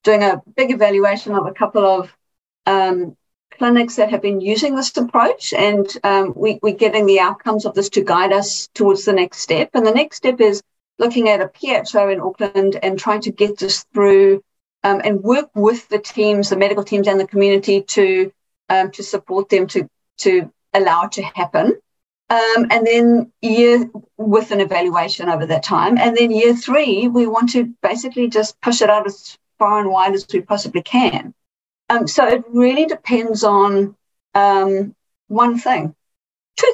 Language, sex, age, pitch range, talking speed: English, female, 50-69, 195-235 Hz, 185 wpm